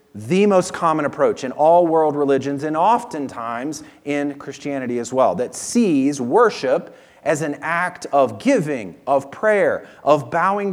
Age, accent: 40-59, American